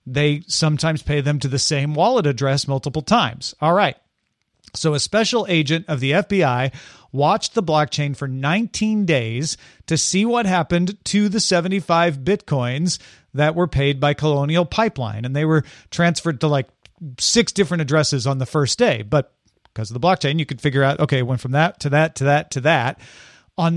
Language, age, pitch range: English, 40-59, 140-195 Hz